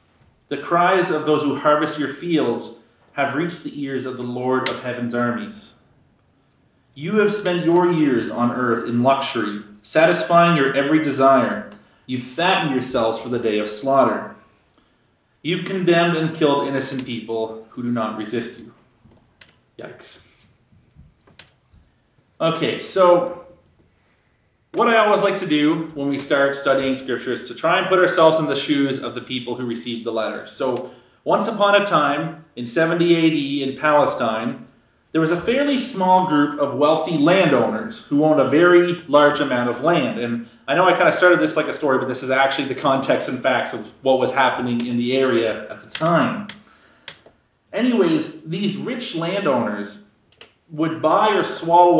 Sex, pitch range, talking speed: male, 120-165 Hz, 165 wpm